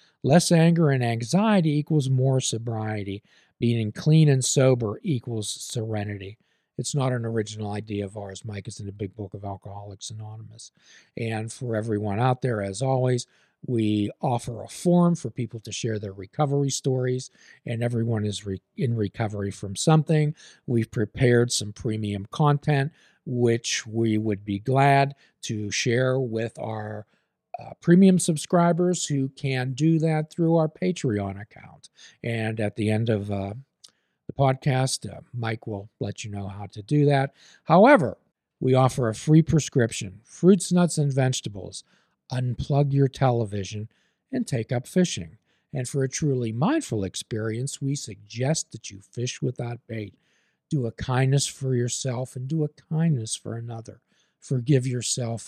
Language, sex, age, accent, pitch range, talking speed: English, male, 50-69, American, 110-140 Hz, 150 wpm